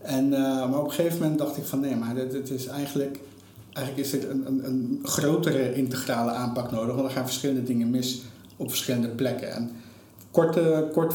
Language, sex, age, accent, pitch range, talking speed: Dutch, male, 50-69, Dutch, 115-140 Hz, 180 wpm